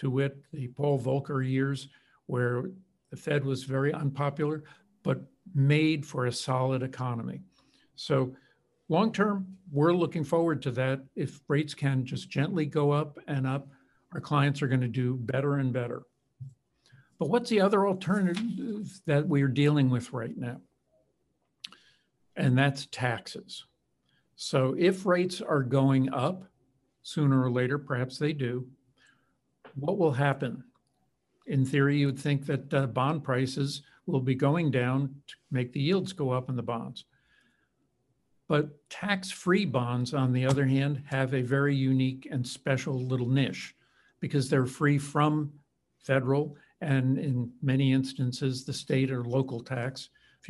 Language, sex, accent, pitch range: English, male, American, 130-150 Hz